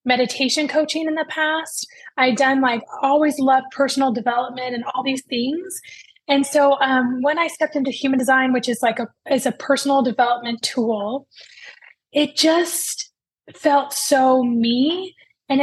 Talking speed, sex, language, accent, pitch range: 155 wpm, female, English, American, 255-310 Hz